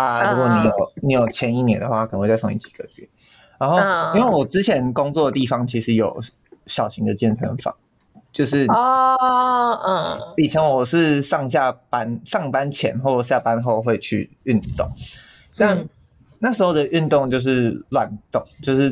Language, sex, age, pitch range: Chinese, male, 20-39, 120-165 Hz